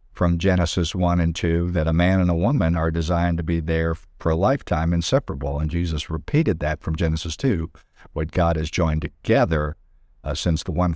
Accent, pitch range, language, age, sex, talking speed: American, 80-90 Hz, English, 50-69, male, 195 wpm